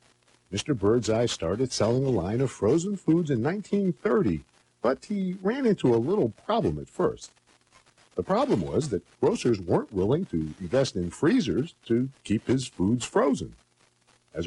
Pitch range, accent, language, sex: 105-175 Hz, American, English, male